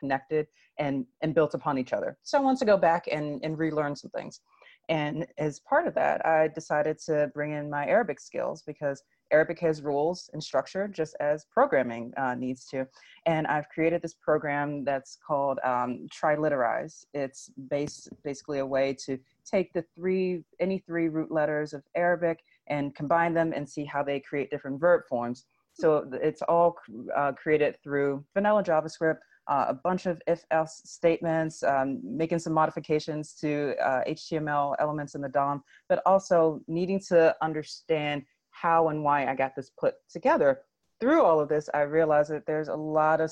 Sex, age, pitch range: female, 30-49, 140-160 Hz